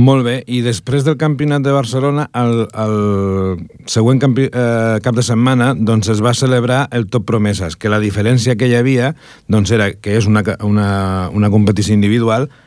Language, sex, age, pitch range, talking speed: Italian, male, 50-69, 105-125 Hz, 175 wpm